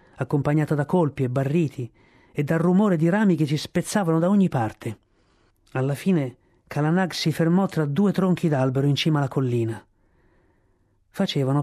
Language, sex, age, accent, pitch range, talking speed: Italian, male, 40-59, native, 120-165 Hz, 155 wpm